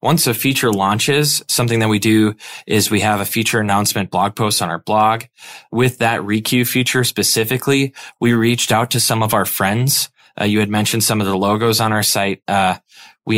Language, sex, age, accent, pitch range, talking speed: English, male, 20-39, American, 105-120 Hz, 200 wpm